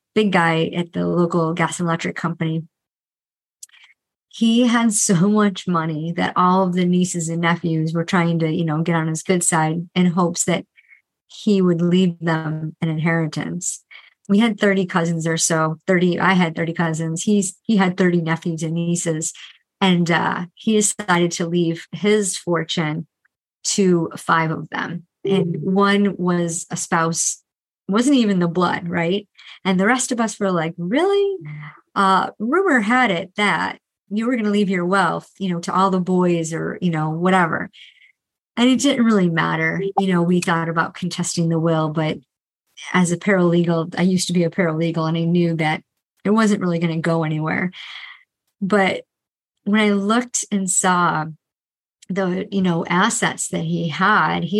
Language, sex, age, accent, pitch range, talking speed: English, male, 30-49, American, 165-195 Hz, 170 wpm